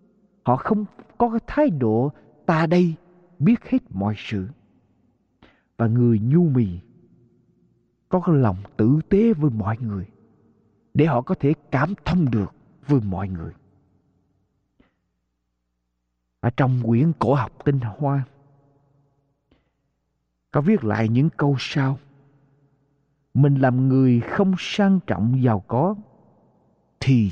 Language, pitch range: Vietnamese, 120-190 Hz